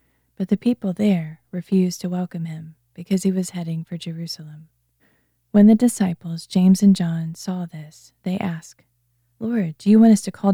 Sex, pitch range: female, 155-200 Hz